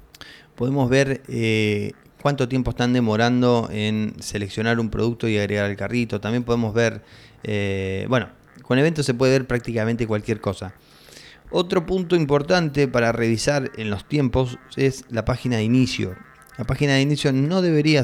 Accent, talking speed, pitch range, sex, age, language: Argentinian, 155 wpm, 110-135 Hz, male, 20-39, Spanish